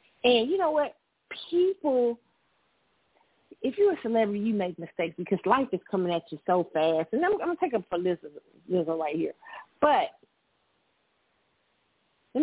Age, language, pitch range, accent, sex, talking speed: 40-59, English, 170-210 Hz, American, female, 165 wpm